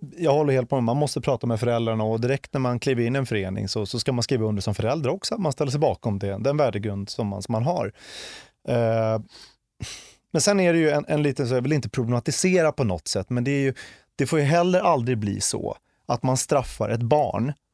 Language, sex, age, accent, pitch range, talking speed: Swedish, male, 30-49, native, 110-145 Hz, 245 wpm